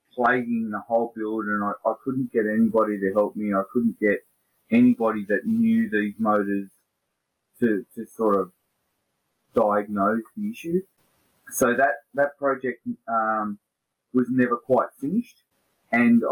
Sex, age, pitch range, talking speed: male, 30-49, 100-130 Hz, 140 wpm